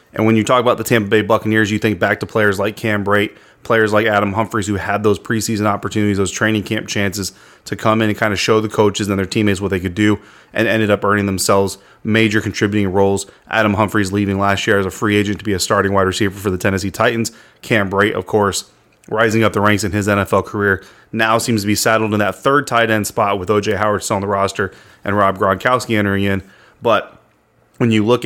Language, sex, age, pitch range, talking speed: English, male, 30-49, 100-110 Hz, 240 wpm